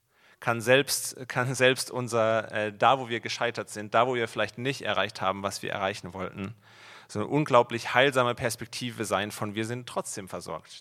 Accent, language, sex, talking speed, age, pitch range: German, German, male, 185 wpm, 30-49, 110-130 Hz